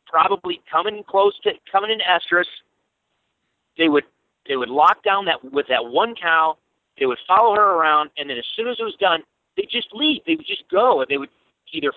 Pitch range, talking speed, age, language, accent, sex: 135-215 Hz, 210 wpm, 40-59, English, American, male